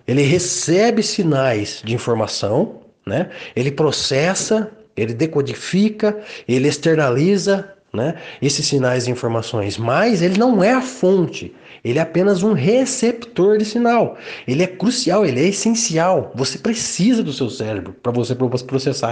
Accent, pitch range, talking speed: Brazilian, 125-195 Hz, 140 wpm